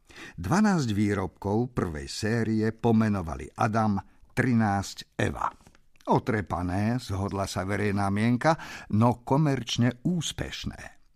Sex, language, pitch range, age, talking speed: male, Slovak, 100-125 Hz, 50-69, 85 wpm